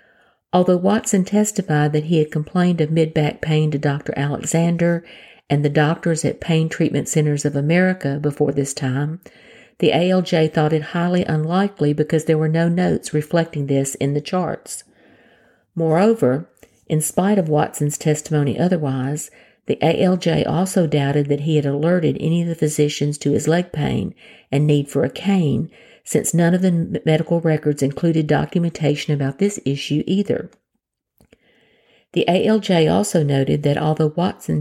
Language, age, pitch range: English, 50-69, 150-175 Hz